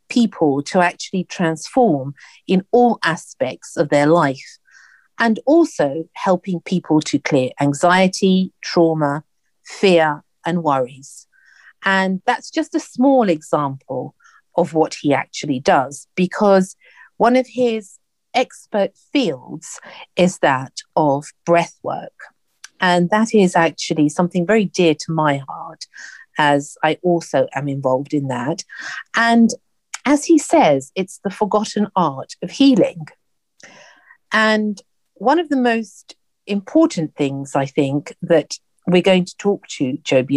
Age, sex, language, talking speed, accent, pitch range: 50-69, female, English, 130 wpm, British, 150-215 Hz